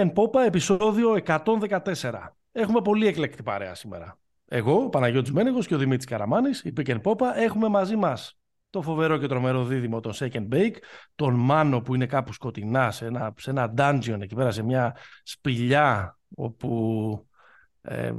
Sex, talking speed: male, 160 wpm